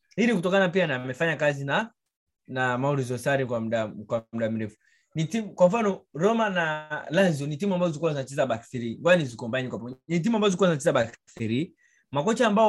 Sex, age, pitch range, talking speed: male, 20-39, 130-175 Hz, 145 wpm